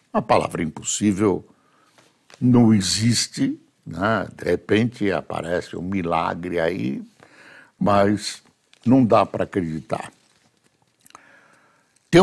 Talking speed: 90 wpm